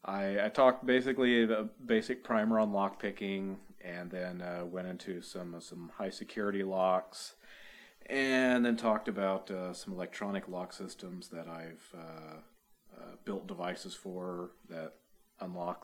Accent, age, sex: American, 40-59, male